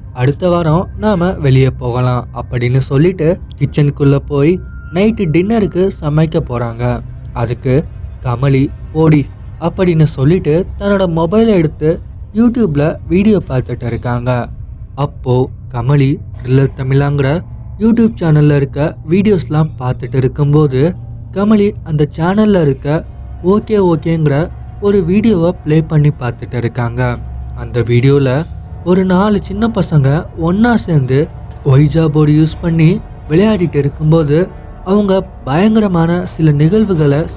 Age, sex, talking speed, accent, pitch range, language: 20-39, male, 100 wpm, native, 130-180 Hz, Tamil